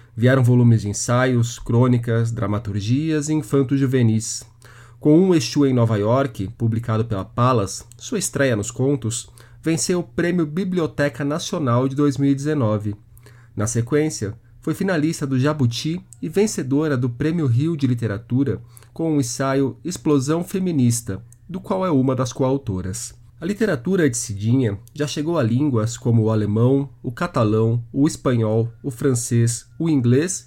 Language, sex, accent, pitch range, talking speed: Portuguese, male, Brazilian, 115-150 Hz, 140 wpm